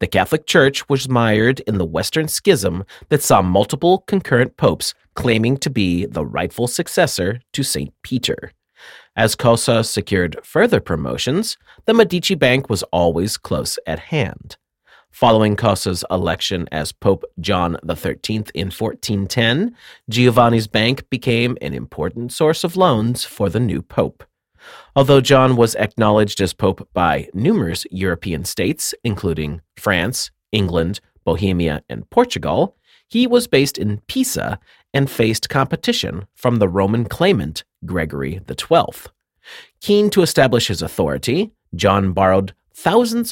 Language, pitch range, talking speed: English, 95-135 Hz, 135 wpm